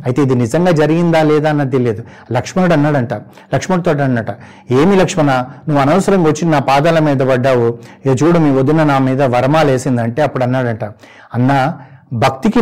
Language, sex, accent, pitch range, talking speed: Telugu, male, native, 130-165 Hz, 145 wpm